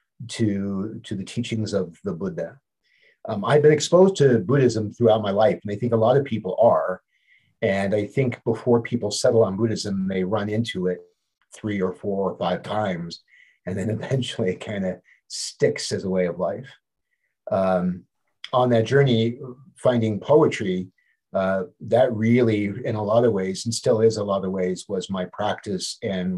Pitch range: 95-115 Hz